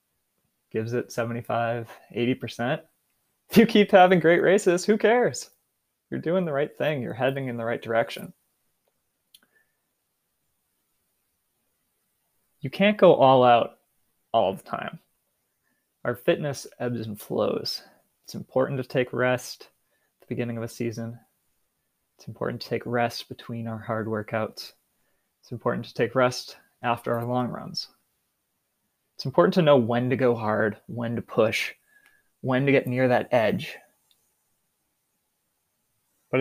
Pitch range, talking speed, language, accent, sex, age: 115-135 Hz, 135 wpm, English, American, male, 20-39